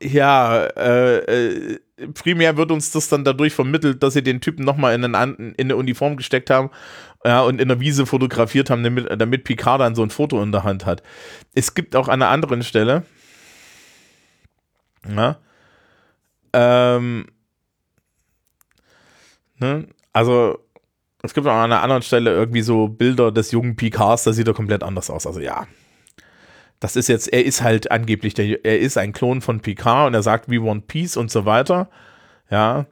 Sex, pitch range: male, 110-140 Hz